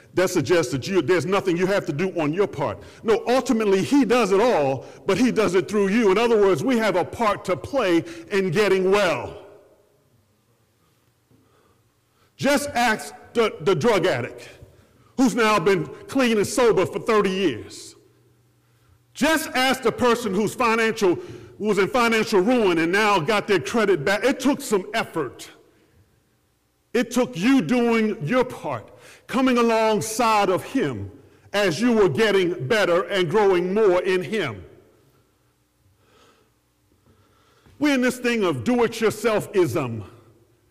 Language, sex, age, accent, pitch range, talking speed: English, male, 50-69, American, 185-250 Hz, 145 wpm